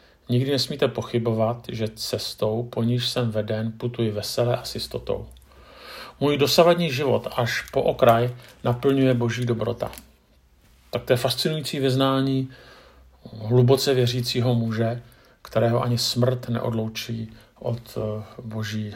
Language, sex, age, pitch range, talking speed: Czech, male, 50-69, 115-130 Hz, 110 wpm